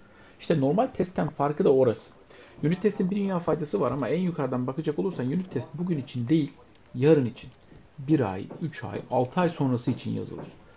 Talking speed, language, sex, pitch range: 185 wpm, Turkish, male, 125-175 Hz